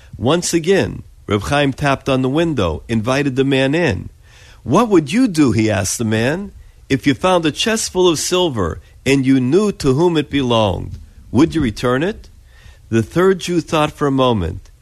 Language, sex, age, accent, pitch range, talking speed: English, male, 50-69, American, 105-160 Hz, 185 wpm